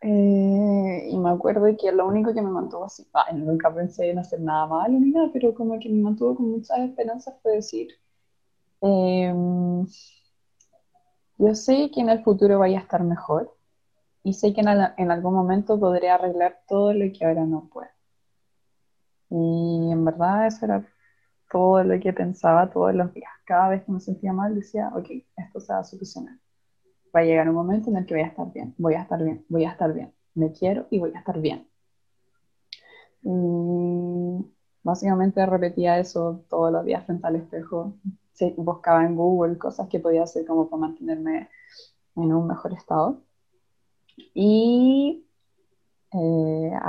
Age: 20-39